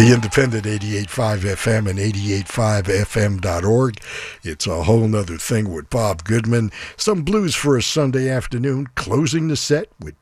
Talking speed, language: 135 wpm, English